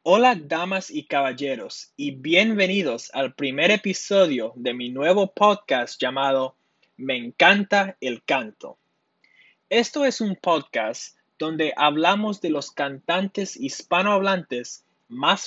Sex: male